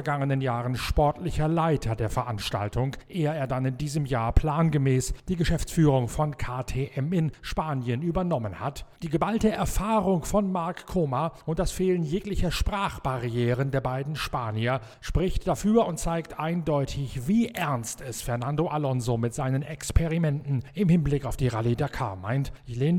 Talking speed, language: 145 wpm, German